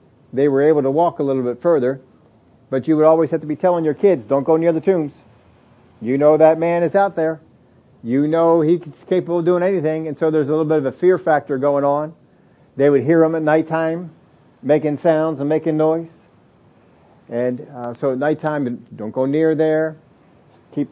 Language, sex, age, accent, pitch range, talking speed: English, male, 50-69, American, 140-165 Hz, 205 wpm